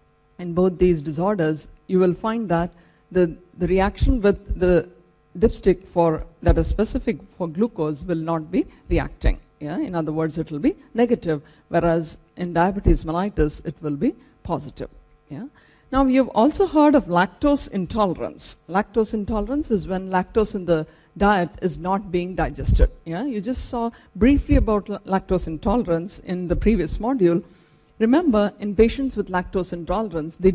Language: English